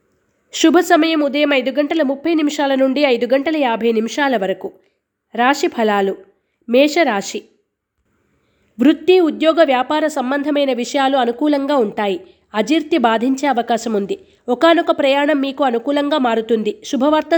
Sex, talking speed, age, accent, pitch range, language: female, 115 wpm, 20-39, native, 240-300 Hz, Telugu